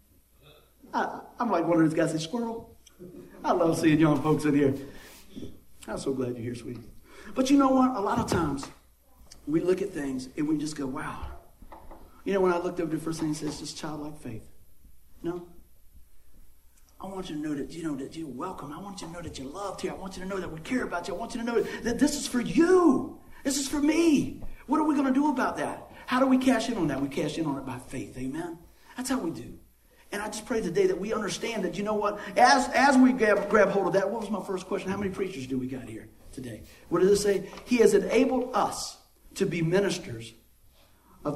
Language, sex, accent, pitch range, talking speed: English, male, American, 145-230 Hz, 250 wpm